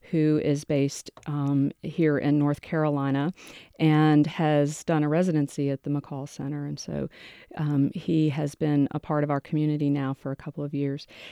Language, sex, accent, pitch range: English, female, American, 140-155 Hz